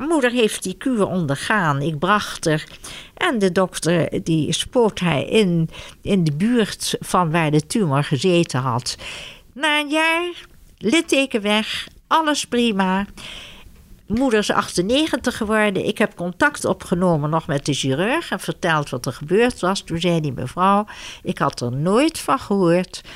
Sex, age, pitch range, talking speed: female, 60-79, 155-225 Hz, 155 wpm